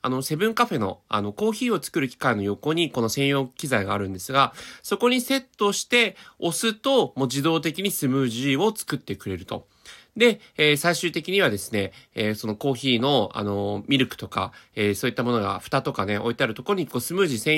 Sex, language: male, Japanese